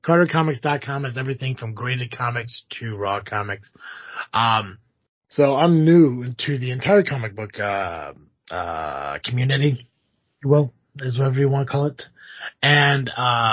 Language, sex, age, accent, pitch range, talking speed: English, male, 30-49, American, 105-135 Hz, 140 wpm